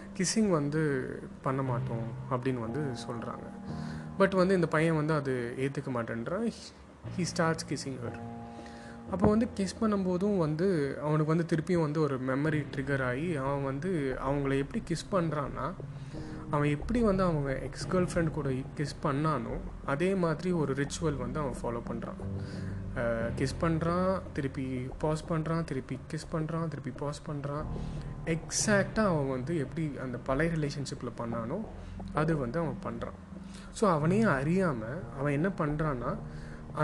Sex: male